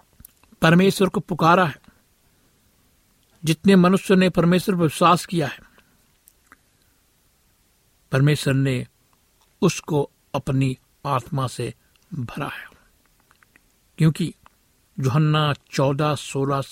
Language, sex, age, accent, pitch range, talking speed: Hindi, male, 60-79, native, 135-160 Hz, 85 wpm